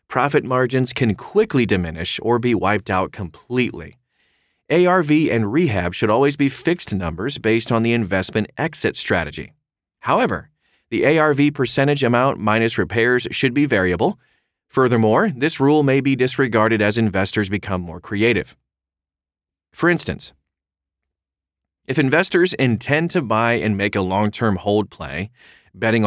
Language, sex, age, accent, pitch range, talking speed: English, male, 30-49, American, 95-140 Hz, 135 wpm